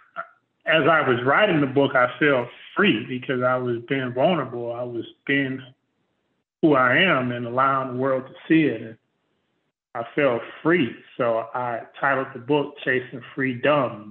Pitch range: 115-135 Hz